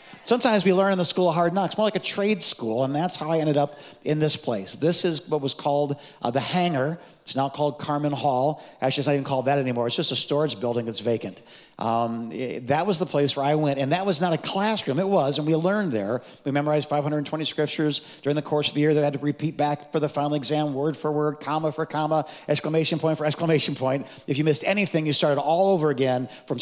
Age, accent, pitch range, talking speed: 50-69, American, 140-165 Hz, 250 wpm